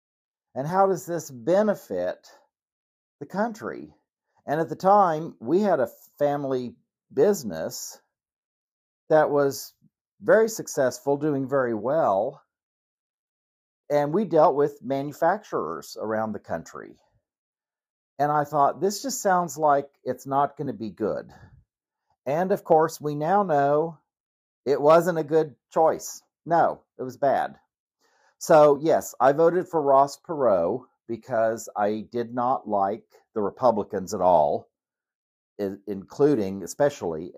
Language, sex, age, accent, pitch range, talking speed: English, male, 50-69, American, 125-160 Hz, 120 wpm